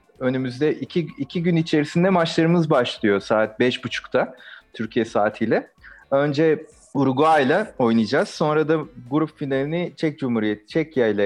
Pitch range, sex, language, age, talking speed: 125-170 Hz, male, Turkish, 40-59, 110 wpm